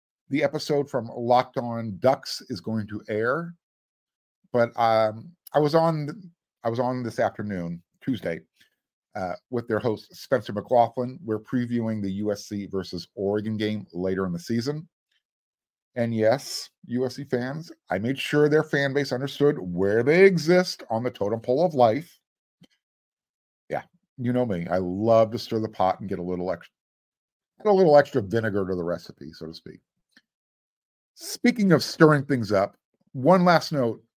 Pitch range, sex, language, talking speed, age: 105-145 Hz, male, English, 160 wpm, 50-69